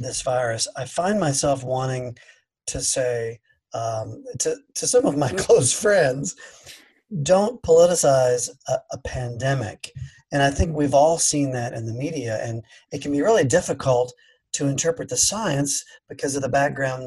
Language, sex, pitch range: English, male, 125-150 Hz